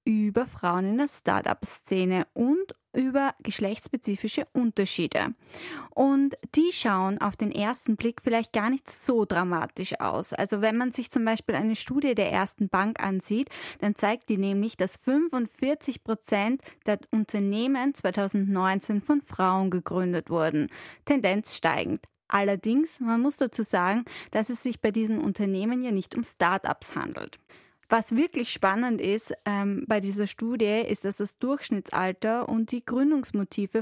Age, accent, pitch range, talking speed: 20-39, German, 200-265 Hz, 140 wpm